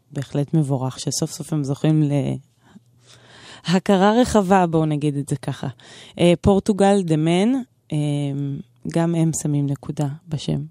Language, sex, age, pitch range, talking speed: Hebrew, female, 20-39, 145-180 Hz, 135 wpm